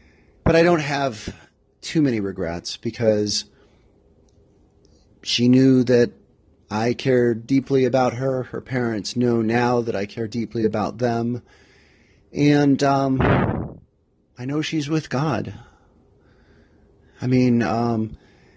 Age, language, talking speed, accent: 30-49, English, 115 wpm, American